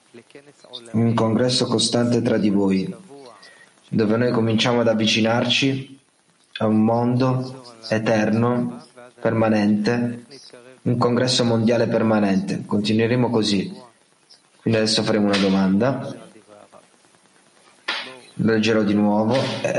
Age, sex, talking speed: 20-39, male, 90 wpm